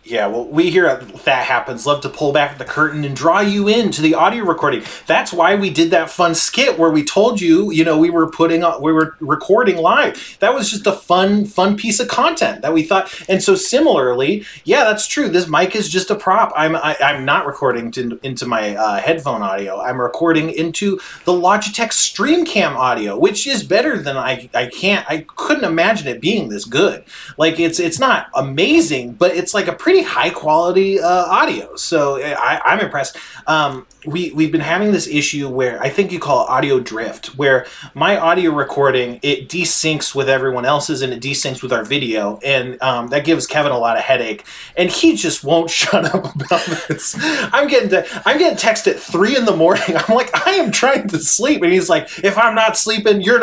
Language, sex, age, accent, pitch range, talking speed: English, male, 30-49, American, 150-210 Hz, 210 wpm